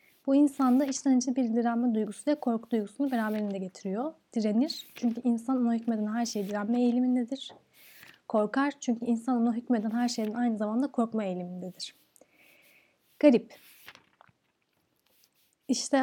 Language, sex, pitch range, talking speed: Turkish, female, 210-255 Hz, 120 wpm